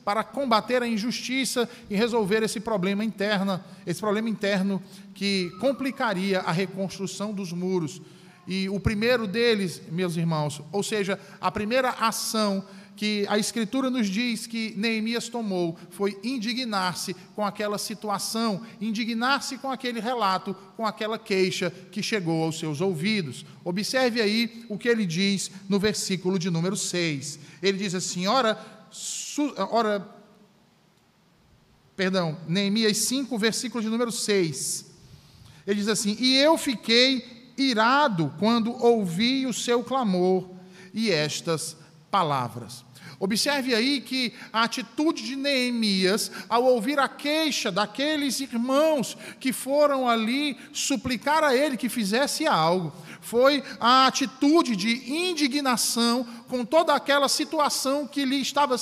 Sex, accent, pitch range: male, Brazilian, 195-255 Hz